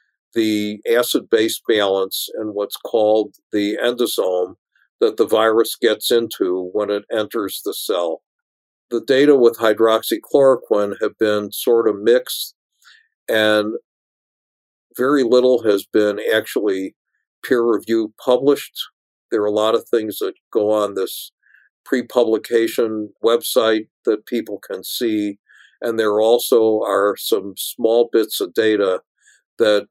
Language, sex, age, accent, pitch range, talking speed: English, male, 50-69, American, 105-155 Hz, 120 wpm